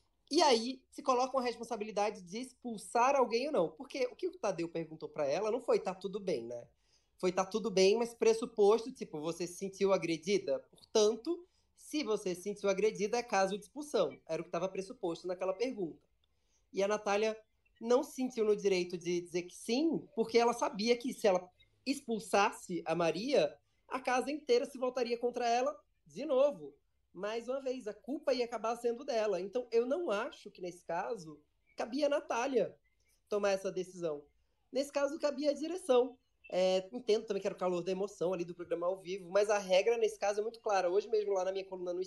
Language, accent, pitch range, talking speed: Portuguese, Brazilian, 190-250 Hz, 200 wpm